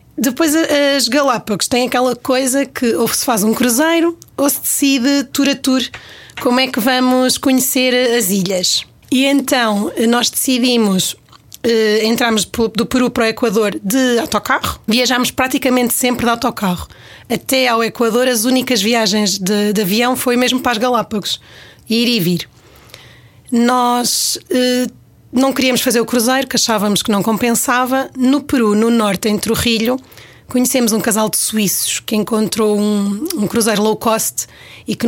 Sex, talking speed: female, 155 wpm